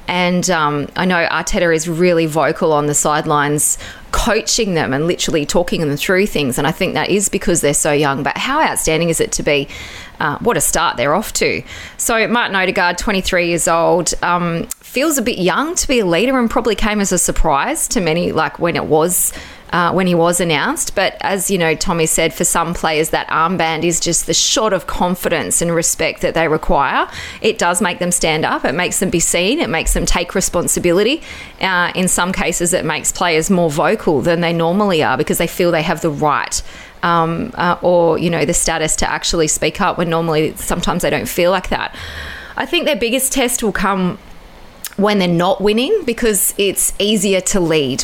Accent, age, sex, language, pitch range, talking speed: Australian, 20-39, female, English, 160-195 Hz, 210 wpm